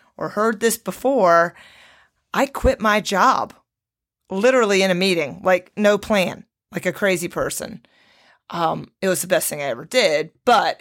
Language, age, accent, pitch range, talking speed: English, 40-59, American, 175-230 Hz, 160 wpm